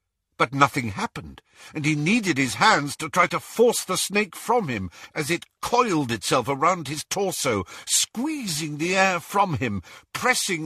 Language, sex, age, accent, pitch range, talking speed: English, male, 50-69, British, 135-225 Hz, 165 wpm